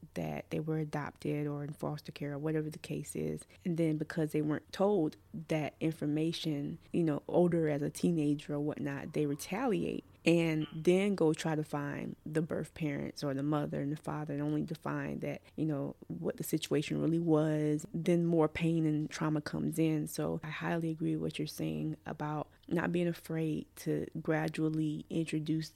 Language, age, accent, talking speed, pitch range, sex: English, 20-39, American, 185 wpm, 155-180 Hz, female